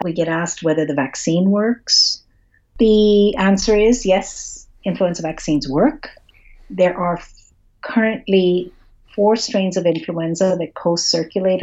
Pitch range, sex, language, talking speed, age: 155-210 Hz, female, English, 120 wpm, 50-69